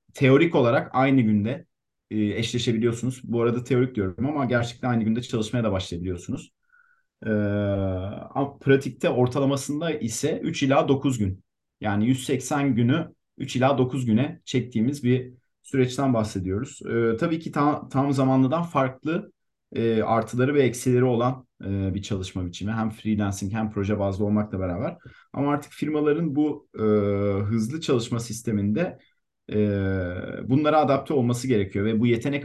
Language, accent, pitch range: Turkish, native, 105-135 Hz